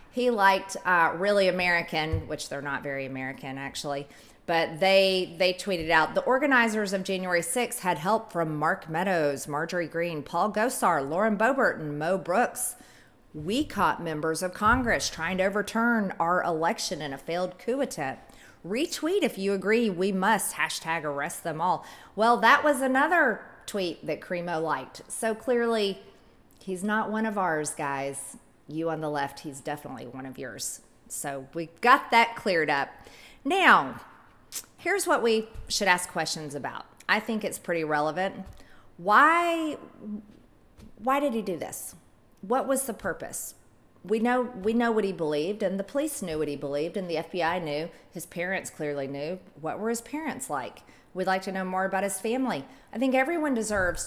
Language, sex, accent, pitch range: English, female, American, 160-230 Hz